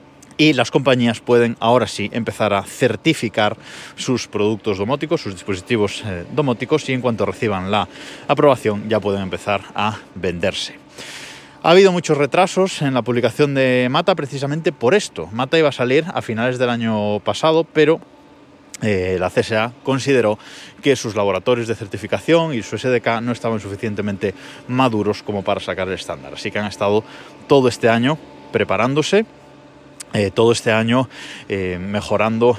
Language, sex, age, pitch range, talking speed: Spanish, male, 20-39, 105-140 Hz, 155 wpm